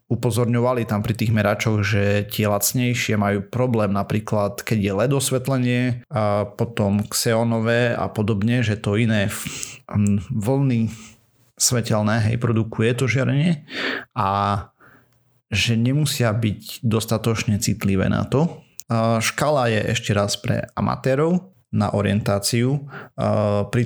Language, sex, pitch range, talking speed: Slovak, male, 105-120 Hz, 120 wpm